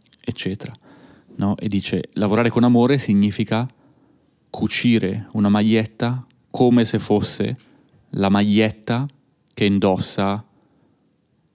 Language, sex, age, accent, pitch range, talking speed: Italian, male, 30-49, native, 100-115 Hz, 95 wpm